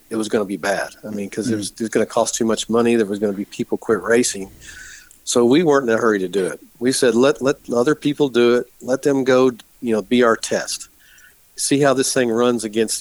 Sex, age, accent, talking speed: male, 50-69, American, 270 wpm